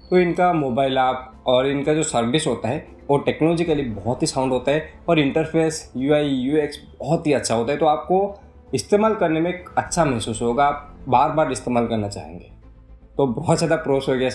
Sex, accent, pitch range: male, native, 115-155 Hz